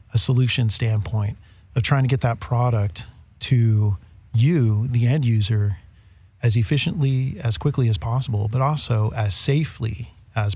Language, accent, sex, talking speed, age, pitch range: English, American, male, 140 wpm, 40-59, 105-125 Hz